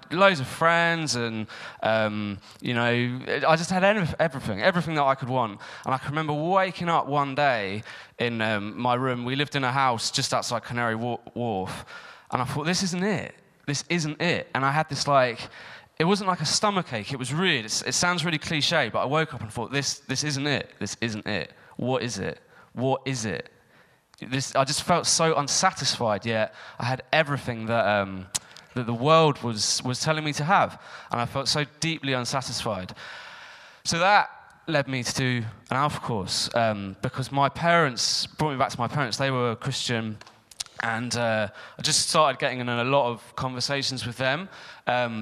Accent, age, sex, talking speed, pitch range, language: British, 20-39, male, 195 wpm, 120-150 Hz, English